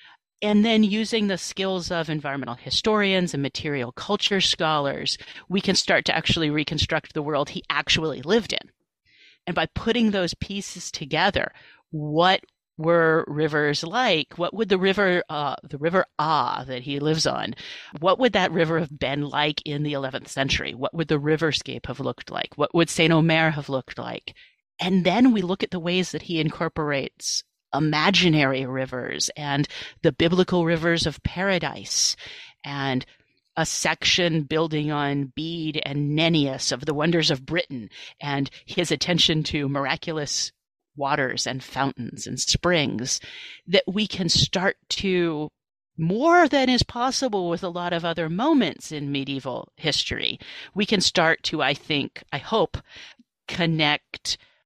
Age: 40-59